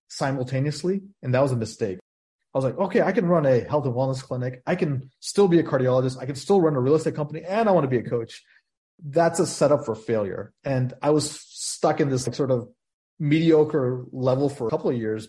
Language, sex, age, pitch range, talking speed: English, male, 30-49, 125-155 Hz, 230 wpm